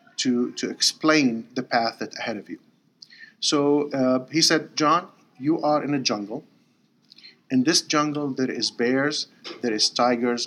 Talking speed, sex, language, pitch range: 155 wpm, male, English, 120-150 Hz